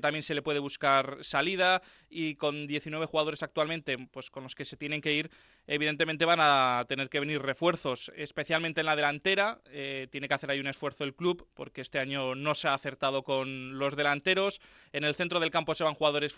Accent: Spanish